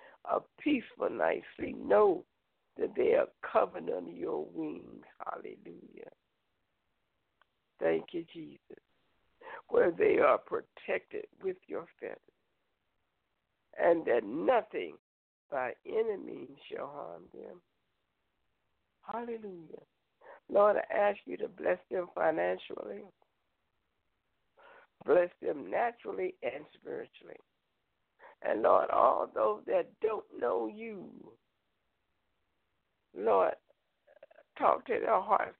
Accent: American